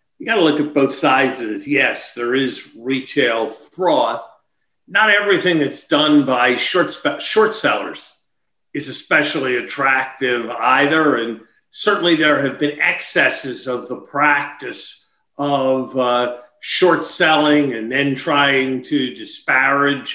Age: 50-69